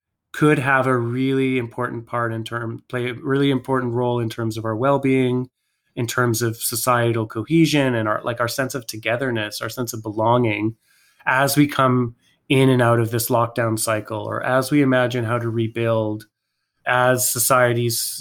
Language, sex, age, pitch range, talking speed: English, male, 20-39, 115-130 Hz, 175 wpm